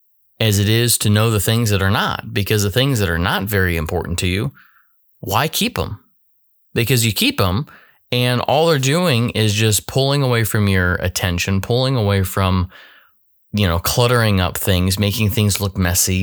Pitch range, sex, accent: 90-110 Hz, male, American